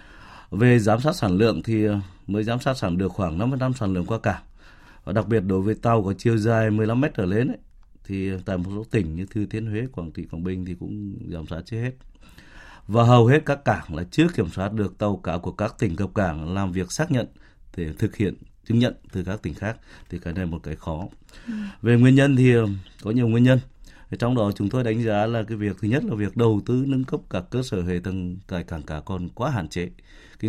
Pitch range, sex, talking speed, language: 95-115 Hz, male, 245 wpm, Vietnamese